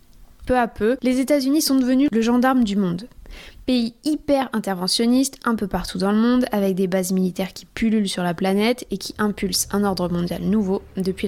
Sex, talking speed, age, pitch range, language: female, 190 wpm, 20-39, 195-235 Hz, French